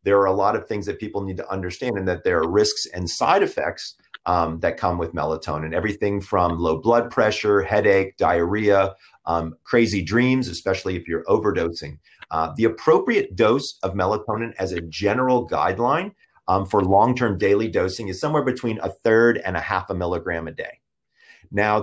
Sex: male